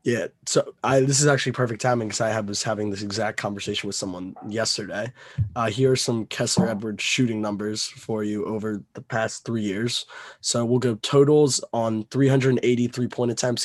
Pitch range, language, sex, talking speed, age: 110-125 Hz, English, male, 185 wpm, 20-39